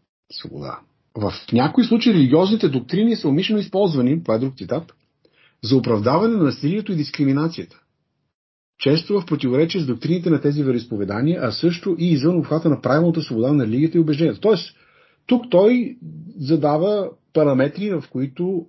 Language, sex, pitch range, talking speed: Bulgarian, male, 130-175 Hz, 150 wpm